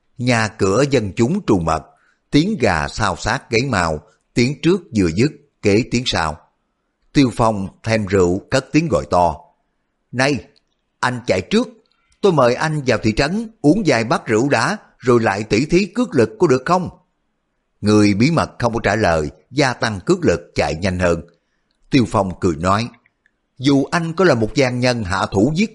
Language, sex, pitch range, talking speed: Vietnamese, male, 100-150 Hz, 185 wpm